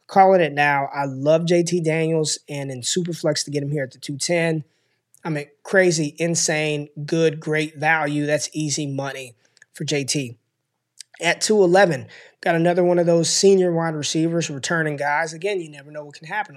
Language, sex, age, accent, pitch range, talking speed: English, male, 20-39, American, 145-170 Hz, 180 wpm